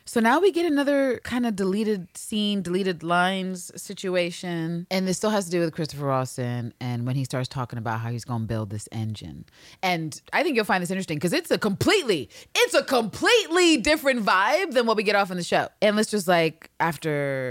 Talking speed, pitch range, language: 215 wpm, 120-185 Hz, English